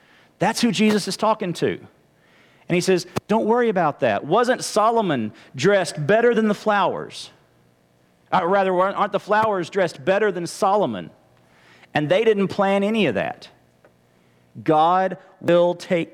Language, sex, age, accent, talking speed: English, male, 40-59, American, 145 wpm